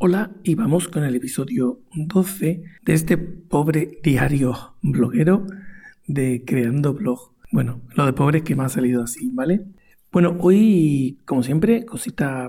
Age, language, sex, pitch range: 50-69, Spanish, male, 140-185 Hz